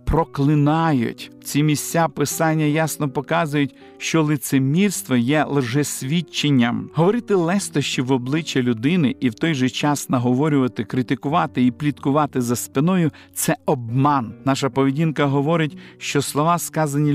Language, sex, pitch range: Ukrainian, male, 135-170 Hz